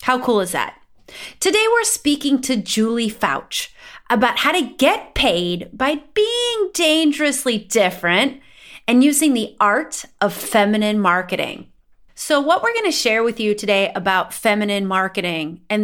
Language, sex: English, female